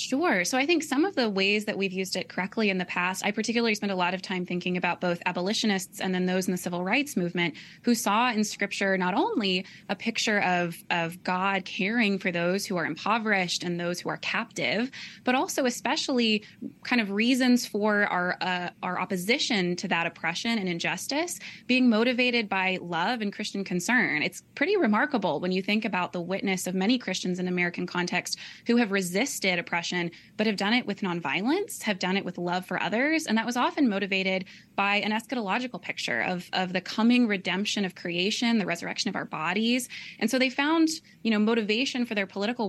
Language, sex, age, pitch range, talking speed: English, female, 20-39, 185-235 Hz, 200 wpm